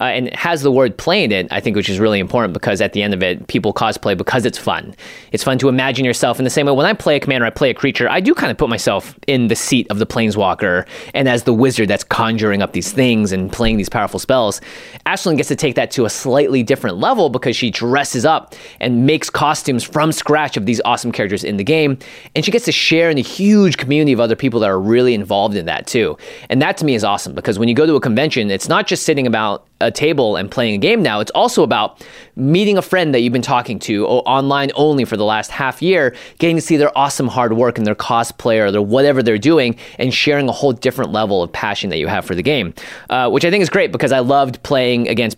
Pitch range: 115-145 Hz